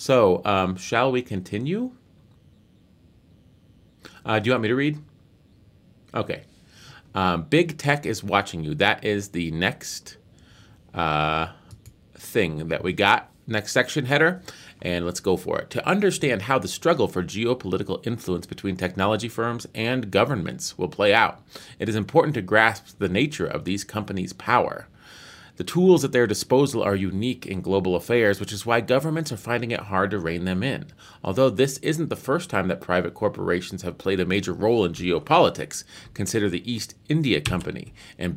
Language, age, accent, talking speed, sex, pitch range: English, 30-49, American, 165 wpm, male, 90-125 Hz